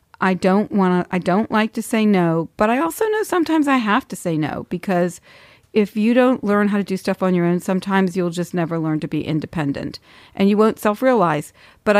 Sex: female